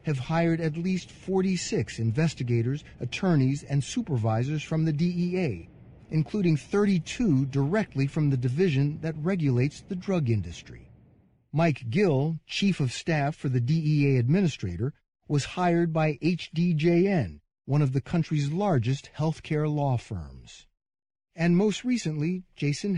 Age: 40-59